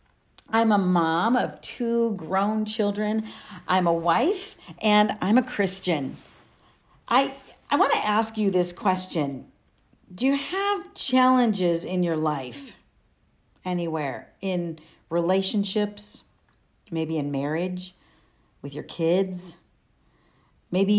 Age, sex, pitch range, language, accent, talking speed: 50-69, female, 165-215 Hz, English, American, 110 wpm